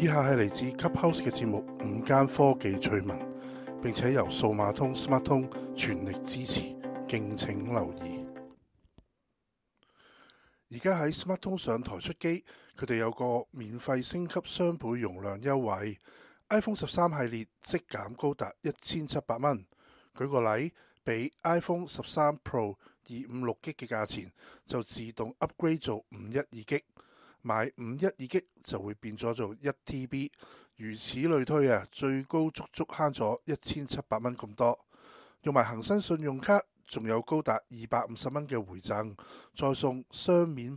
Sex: male